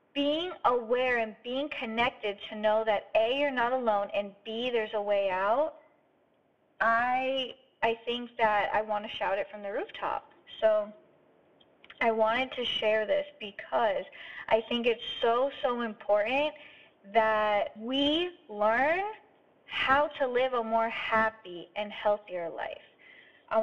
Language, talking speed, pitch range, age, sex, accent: English, 140 wpm, 215-295 Hz, 20-39, female, American